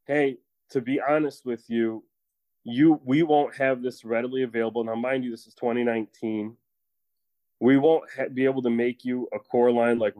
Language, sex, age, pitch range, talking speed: English, male, 20-39, 105-125 Hz, 175 wpm